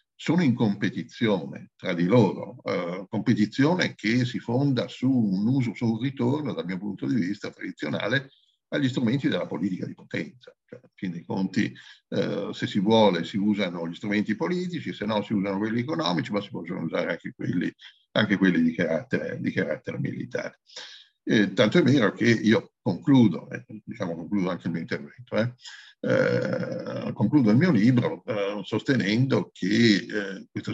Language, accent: Italian, native